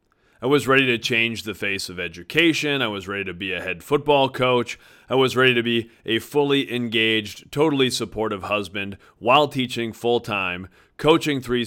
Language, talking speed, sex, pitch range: English, 175 wpm, male, 105-130 Hz